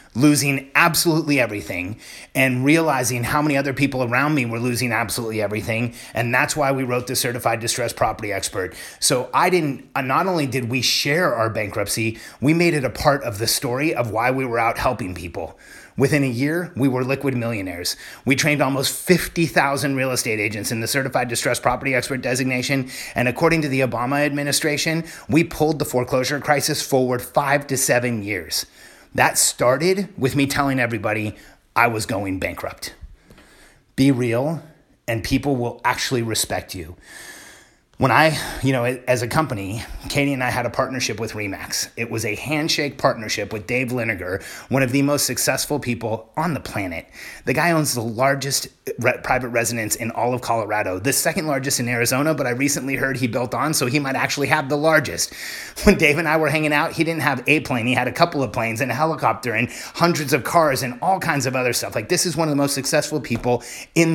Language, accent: English, American